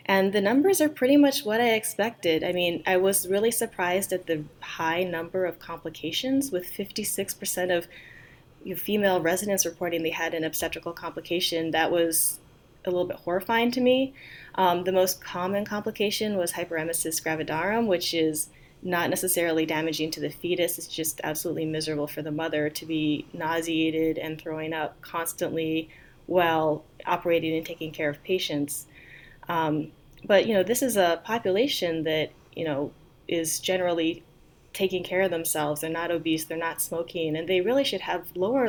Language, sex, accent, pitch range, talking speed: English, female, American, 155-185 Hz, 165 wpm